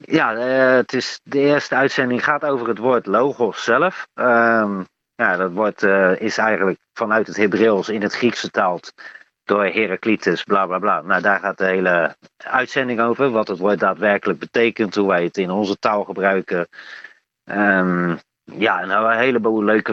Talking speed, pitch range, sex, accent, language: 170 wpm, 95-115 Hz, male, Dutch, Dutch